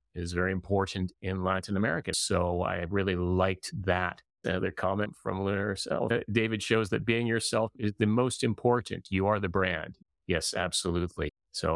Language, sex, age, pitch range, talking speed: English, male, 30-49, 95-125 Hz, 165 wpm